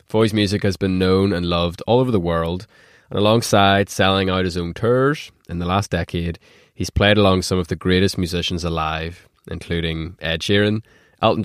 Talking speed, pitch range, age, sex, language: 185 wpm, 85-110 Hz, 20-39, male, English